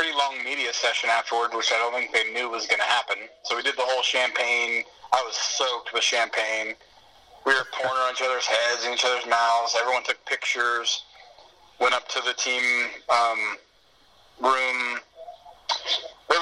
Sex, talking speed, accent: male, 170 wpm, American